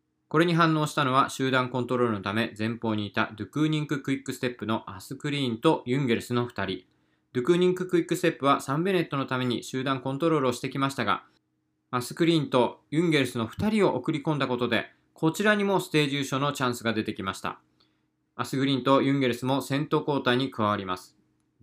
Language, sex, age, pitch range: Japanese, male, 20-39, 115-155 Hz